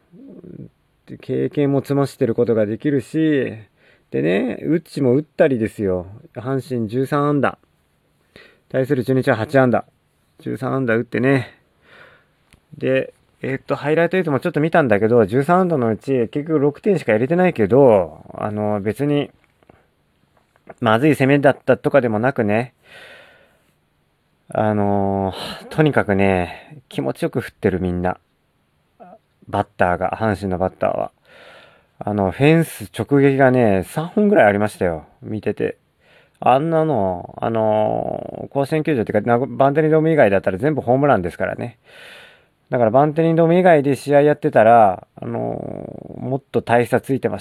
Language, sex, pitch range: Japanese, male, 110-145 Hz